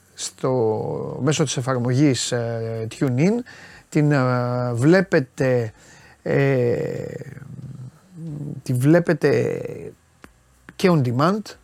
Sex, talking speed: male, 65 wpm